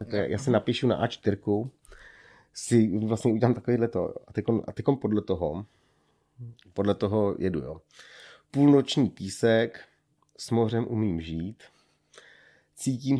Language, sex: Czech, male